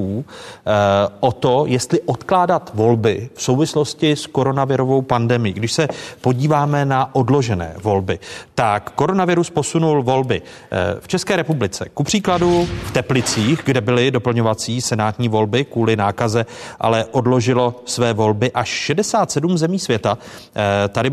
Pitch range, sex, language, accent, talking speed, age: 110-140 Hz, male, Czech, native, 120 wpm, 40-59